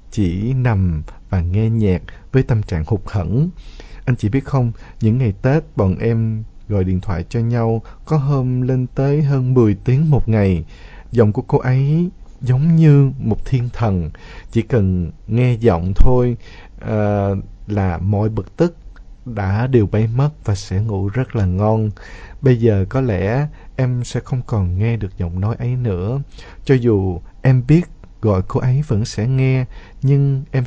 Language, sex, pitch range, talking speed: Vietnamese, male, 95-130 Hz, 170 wpm